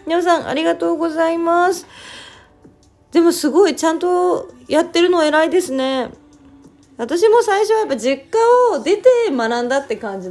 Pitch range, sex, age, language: 195-320 Hz, female, 20-39, Japanese